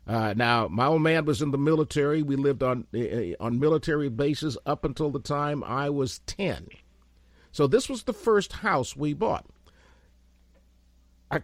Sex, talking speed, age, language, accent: male, 170 wpm, 50-69, English, American